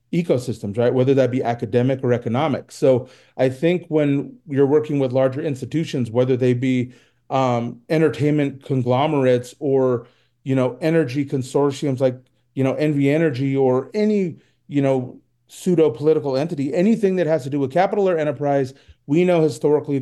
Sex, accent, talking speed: male, American, 155 wpm